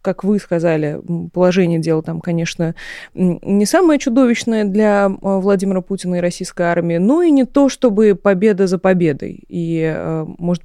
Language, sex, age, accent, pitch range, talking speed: Russian, female, 20-39, native, 170-205 Hz, 145 wpm